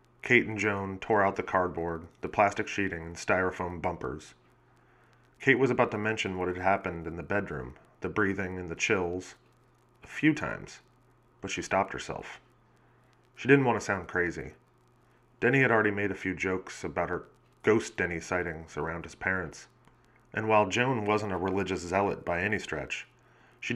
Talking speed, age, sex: 170 wpm, 30-49, male